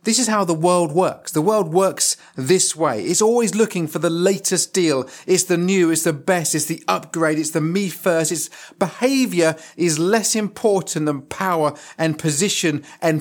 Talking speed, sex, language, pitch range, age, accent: 185 wpm, male, English, 155-200 Hz, 40-59, British